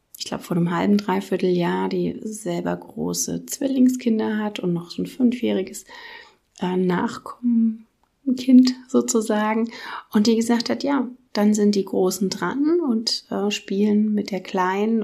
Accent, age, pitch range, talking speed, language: German, 30-49, 185-245 Hz, 135 wpm, German